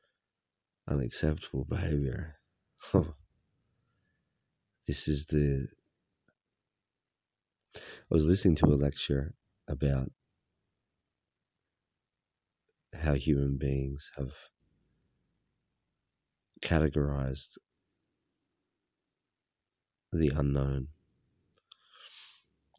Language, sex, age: English, male, 40-59